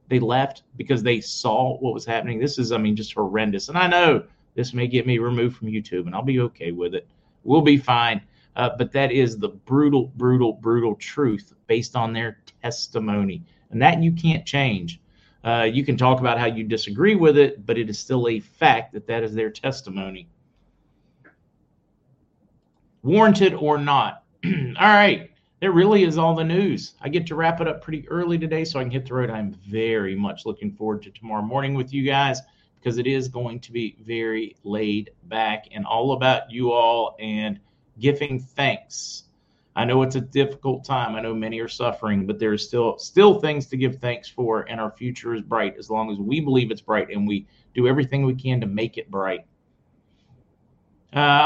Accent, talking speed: American, 200 wpm